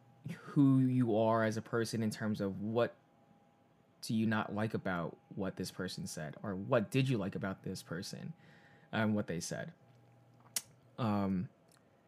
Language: English